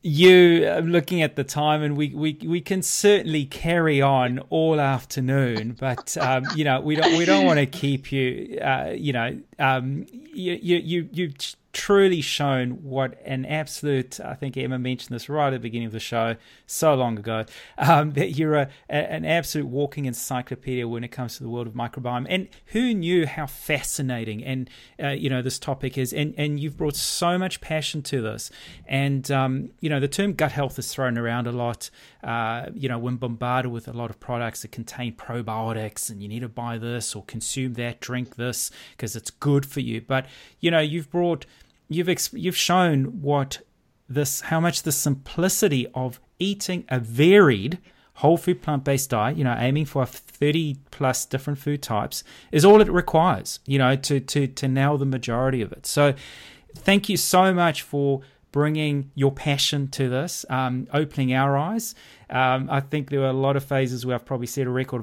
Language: English